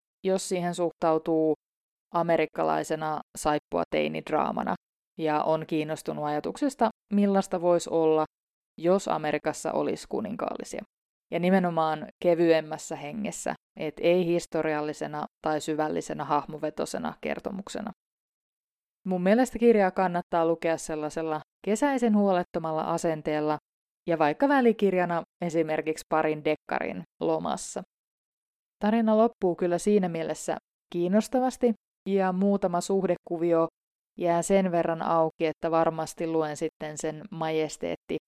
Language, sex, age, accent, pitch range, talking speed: Finnish, female, 20-39, native, 155-190 Hz, 100 wpm